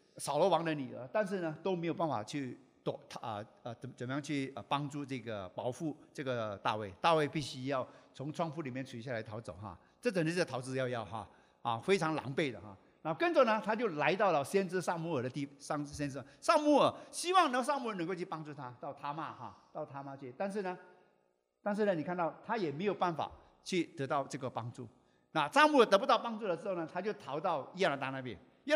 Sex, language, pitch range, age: male, English, 125-190 Hz, 50-69